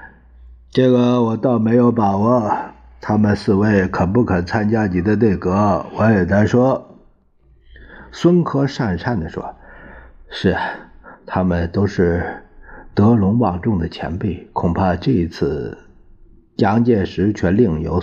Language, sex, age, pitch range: Chinese, male, 50-69, 85-120 Hz